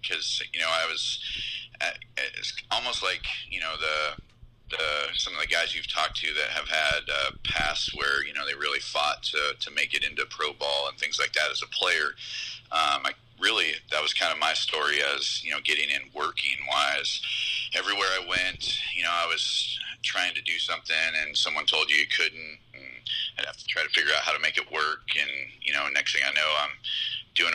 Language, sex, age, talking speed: English, male, 30-49, 220 wpm